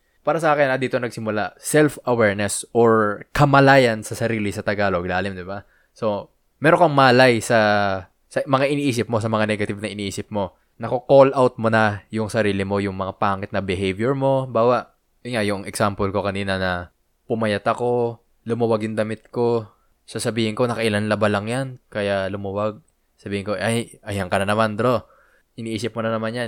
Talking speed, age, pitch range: 175 wpm, 20-39, 105-130 Hz